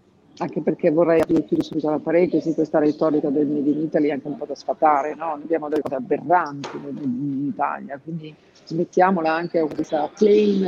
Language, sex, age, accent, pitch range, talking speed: Italian, female, 50-69, native, 150-185 Hz, 175 wpm